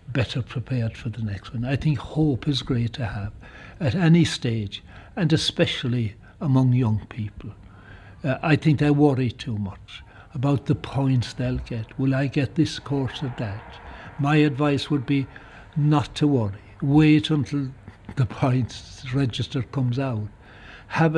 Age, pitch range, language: 60-79, 110-140 Hz, English